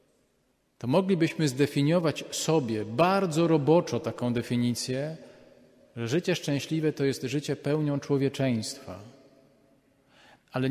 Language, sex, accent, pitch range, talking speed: Polish, male, native, 135-170 Hz, 95 wpm